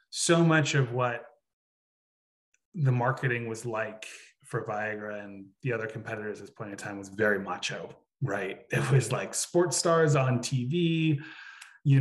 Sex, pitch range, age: male, 115-150 Hz, 20-39